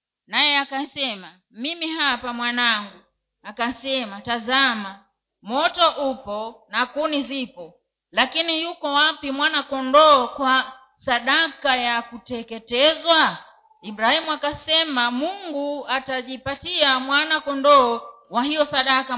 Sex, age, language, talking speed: female, 40-59, Swahili, 95 wpm